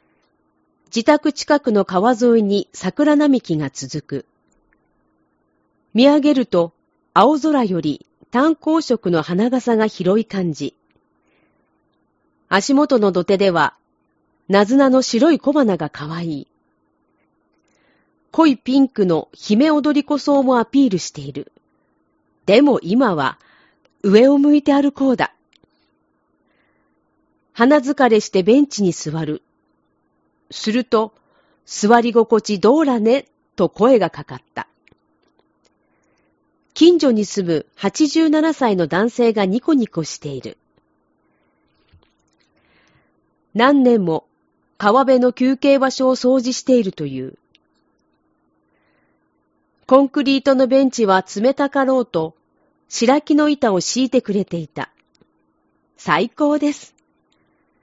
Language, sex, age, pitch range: Japanese, female, 40-59, 175-270 Hz